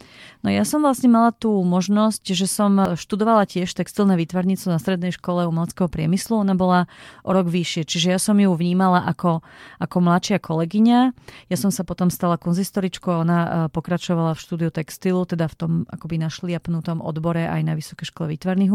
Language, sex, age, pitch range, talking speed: Slovak, female, 30-49, 170-195 Hz, 175 wpm